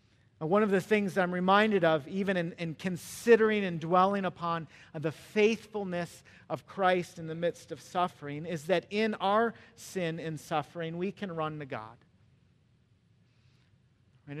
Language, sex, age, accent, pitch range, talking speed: English, male, 40-59, American, 135-190 Hz, 155 wpm